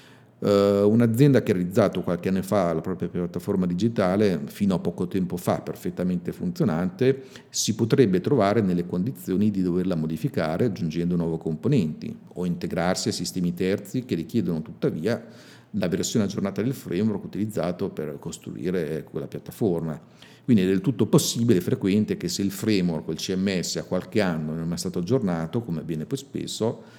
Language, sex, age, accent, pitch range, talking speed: Italian, male, 50-69, native, 85-115 Hz, 160 wpm